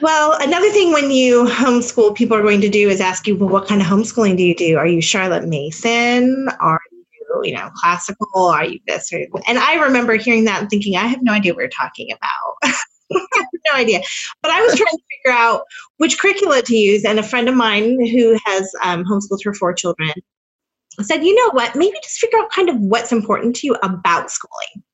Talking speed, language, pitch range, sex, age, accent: 225 wpm, English, 185-255 Hz, female, 30-49, American